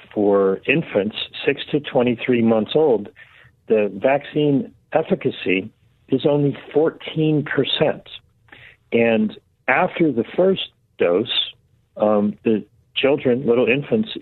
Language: English